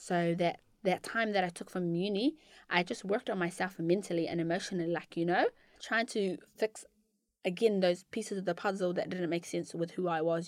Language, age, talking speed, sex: English, 20-39, 210 wpm, female